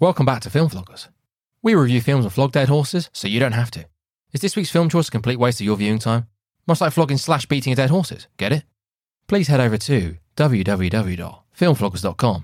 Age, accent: 20-39, British